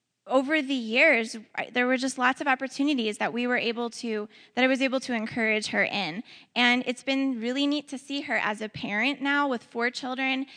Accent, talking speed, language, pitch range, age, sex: American, 210 wpm, English, 210-250 Hz, 10-29, female